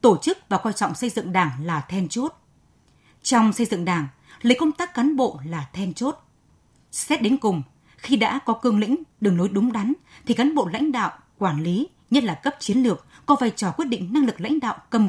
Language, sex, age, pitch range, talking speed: Vietnamese, female, 20-39, 185-260 Hz, 225 wpm